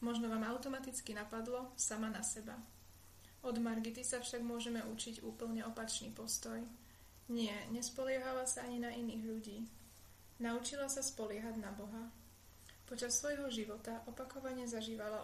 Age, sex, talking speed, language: 30-49, female, 130 wpm, Slovak